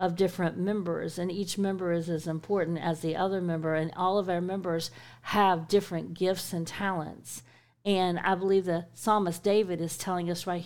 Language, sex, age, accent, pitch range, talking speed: English, female, 40-59, American, 125-195 Hz, 185 wpm